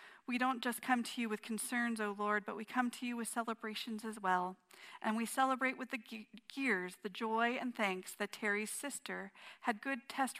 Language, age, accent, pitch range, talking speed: English, 40-59, American, 195-230 Hz, 200 wpm